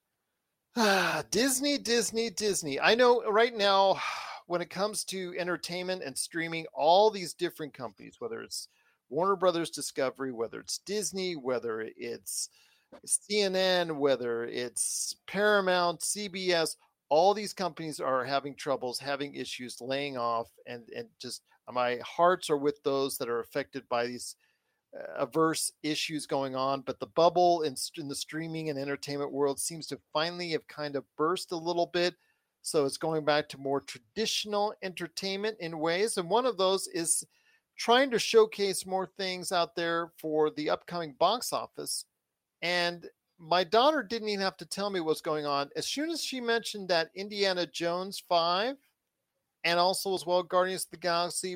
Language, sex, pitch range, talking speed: English, male, 150-200 Hz, 155 wpm